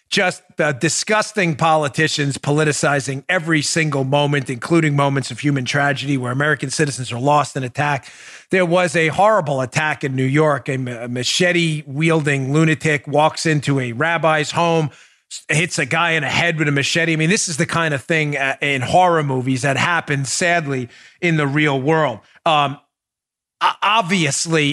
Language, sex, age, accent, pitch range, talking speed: English, male, 40-59, American, 150-215 Hz, 160 wpm